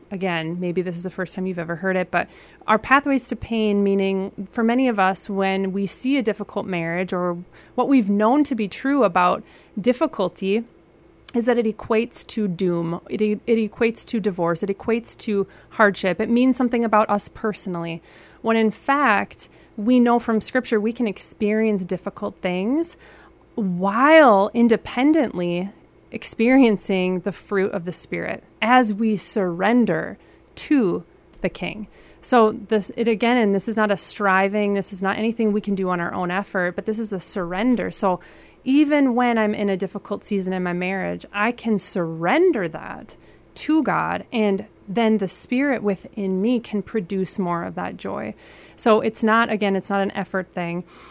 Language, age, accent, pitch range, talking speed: English, 30-49, American, 190-235 Hz, 175 wpm